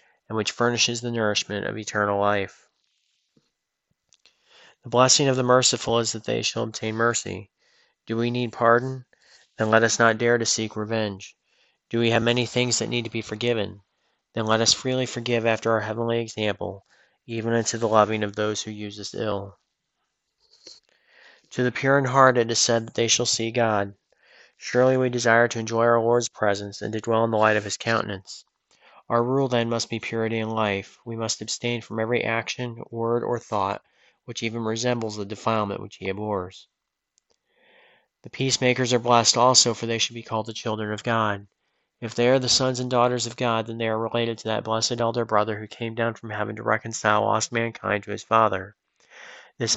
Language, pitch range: English, 110-120 Hz